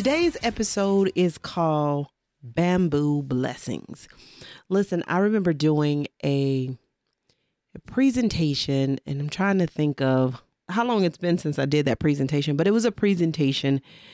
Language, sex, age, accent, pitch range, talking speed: English, female, 40-59, American, 140-180 Hz, 140 wpm